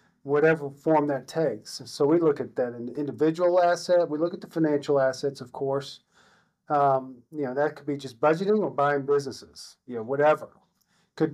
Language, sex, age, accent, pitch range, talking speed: English, male, 40-59, American, 130-155 Hz, 180 wpm